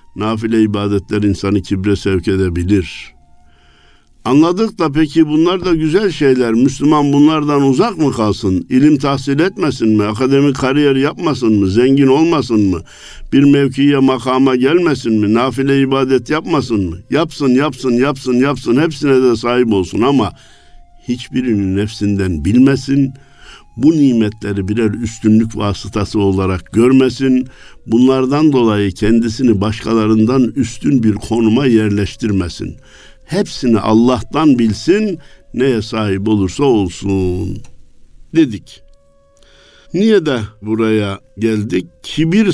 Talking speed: 110 wpm